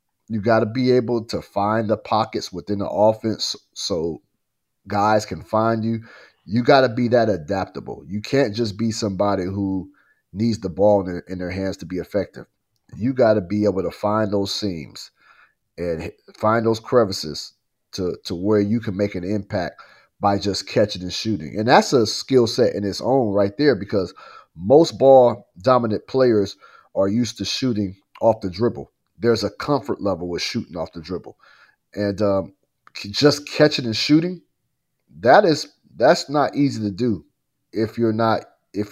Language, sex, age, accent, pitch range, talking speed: English, male, 30-49, American, 100-125 Hz, 175 wpm